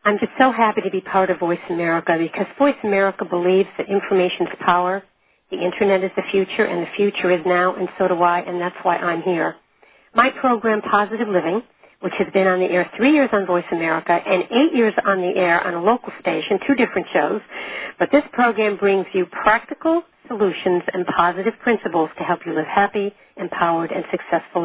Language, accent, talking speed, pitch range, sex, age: English, American, 200 wpm, 180-220 Hz, female, 60-79